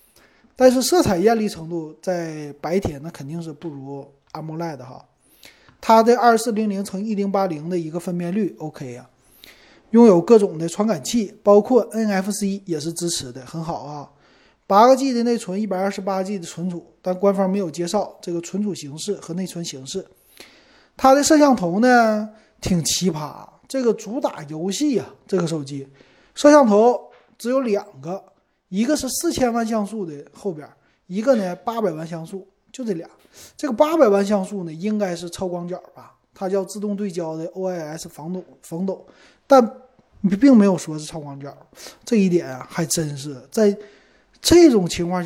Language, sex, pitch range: Chinese, male, 160-215 Hz